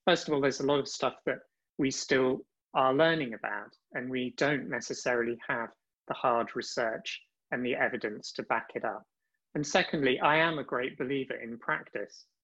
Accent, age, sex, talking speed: British, 30-49, male, 185 wpm